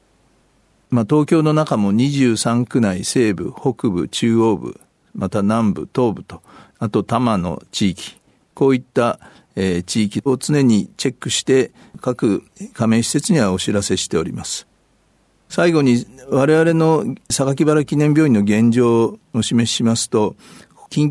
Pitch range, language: 115-150 Hz, Japanese